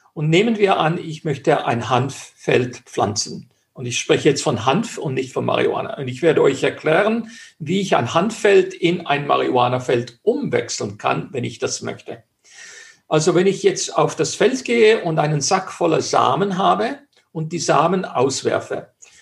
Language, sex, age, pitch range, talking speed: German, male, 50-69, 155-220 Hz, 170 wpm